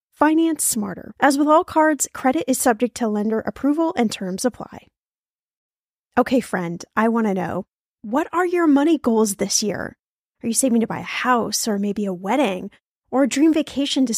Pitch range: 215-290 Hz